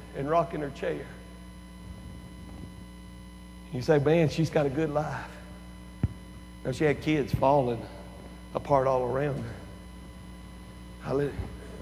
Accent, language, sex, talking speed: American, English, male, 105 wpm